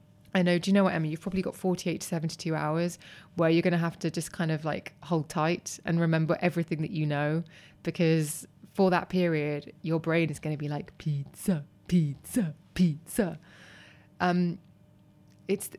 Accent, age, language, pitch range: British, 20-39, English, 155-190 Hz